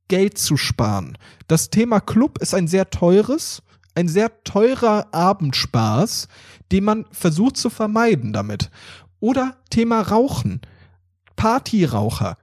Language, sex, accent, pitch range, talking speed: German, male, German, 160-220 Hz, 115 wpm